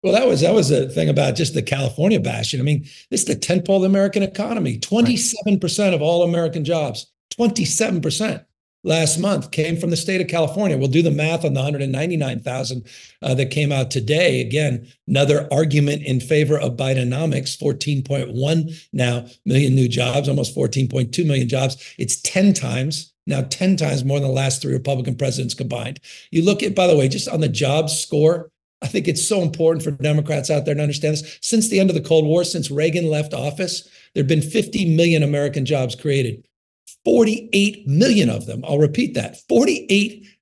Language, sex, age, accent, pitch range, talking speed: English, male, 50-69, American, 140-195 Hz, 190 wpm